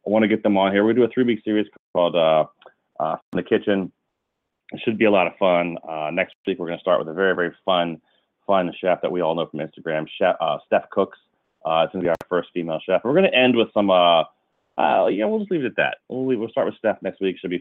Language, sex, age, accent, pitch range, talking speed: English, male, 30-49, American, 85-105 Hz, 285 wpm